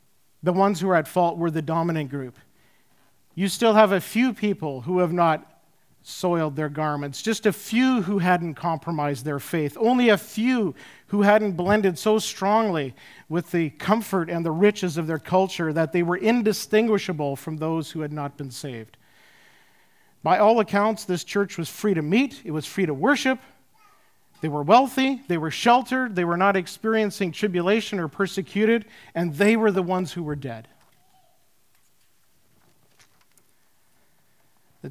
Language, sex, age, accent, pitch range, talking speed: English, male, 50-69, American, 155-205 Hz, 160 wpm